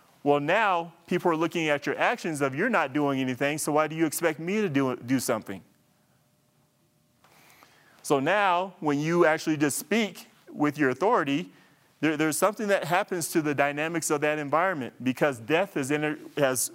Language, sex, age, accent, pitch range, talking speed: English, male, 30-49, American, 135-170 Hz, 165 wpm